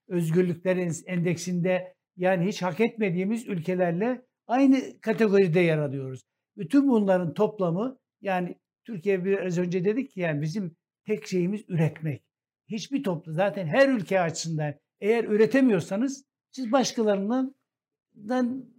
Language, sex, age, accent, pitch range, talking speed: Turkish, male, 60-79, native, 165-210 Hz, 110 wpm